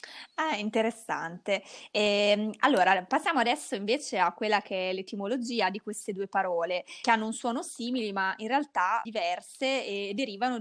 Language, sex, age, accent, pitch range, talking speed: Italian, female, 20-39, native, 195-245 Hz, 155 wpm